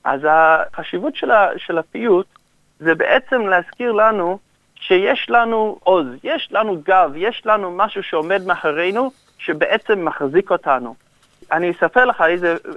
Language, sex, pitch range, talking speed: English, male, 185-275 Hz, 125 wpm